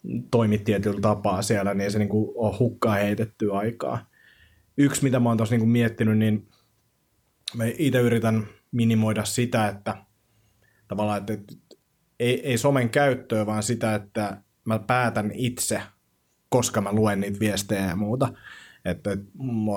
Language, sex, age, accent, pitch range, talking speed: Finnish, male, 30-49, native, 95-110 Hz, 140 wpm